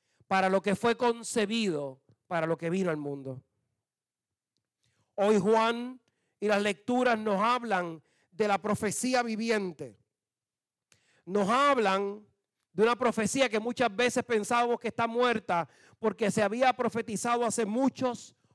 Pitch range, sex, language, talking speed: 185-240 Hz, male, Spanish, 130 wpm